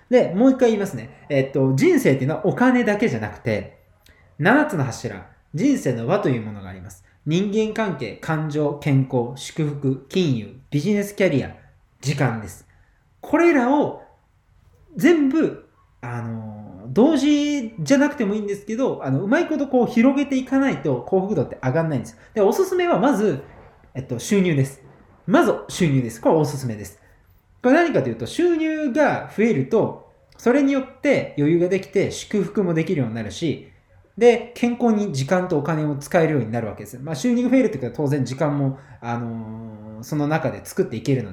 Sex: male